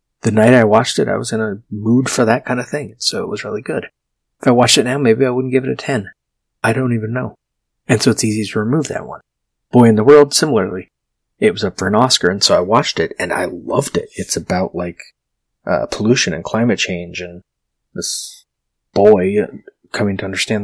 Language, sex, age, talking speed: English, male, 30-49, 225 wpm